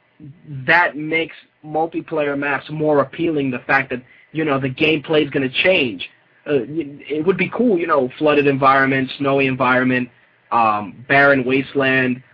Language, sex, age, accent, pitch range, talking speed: English, male, 20-39, American, 130-150 Hz, 150 wpm